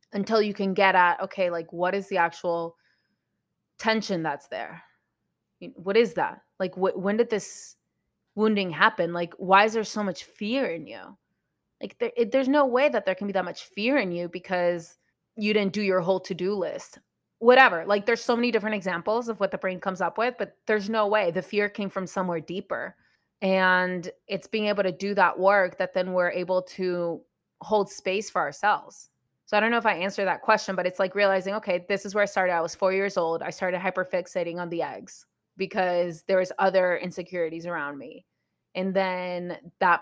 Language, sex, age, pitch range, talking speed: English, female, 20-39, 175-205 Hz, 200 wpm